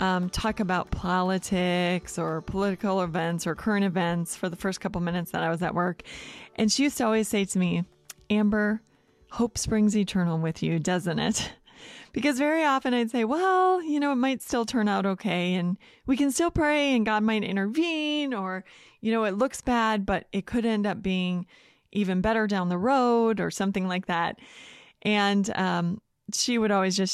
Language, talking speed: English, 190 wpm